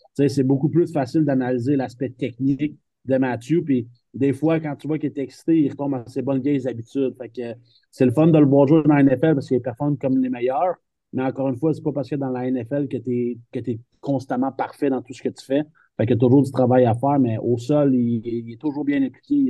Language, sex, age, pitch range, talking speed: French, male, 30-49, 125-140 Hz, 260 wpm